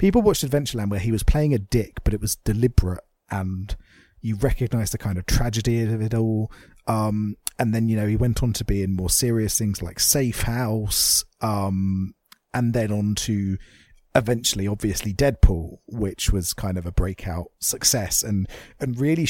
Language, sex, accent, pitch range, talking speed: English, male, British, 95-125 Hz, 180 wpm